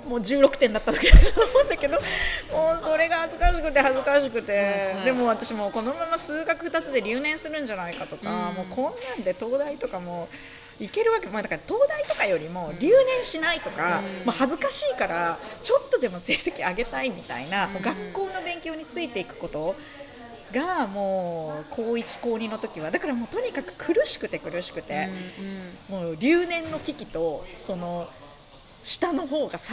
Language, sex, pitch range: Japanese, female, 200-310 Hz